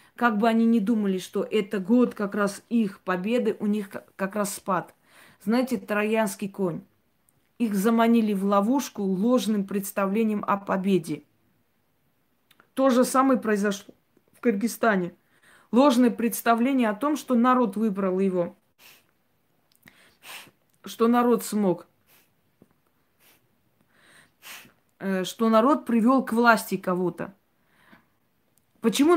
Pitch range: 200-235 Hz